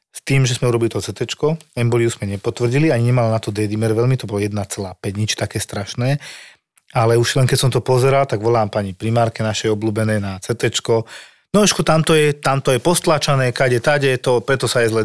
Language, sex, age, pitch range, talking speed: Slovak, male, 40-59, 110-140 Hz, 200 wpm